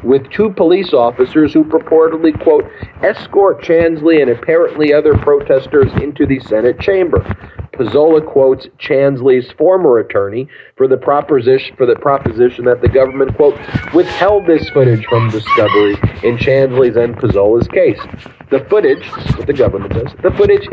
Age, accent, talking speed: 40-59, American, 150 wpm